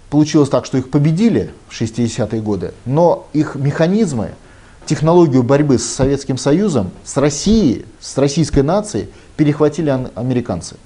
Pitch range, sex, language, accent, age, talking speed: 110-150 Hz, male, Russian, native, 30-49, 125 wpm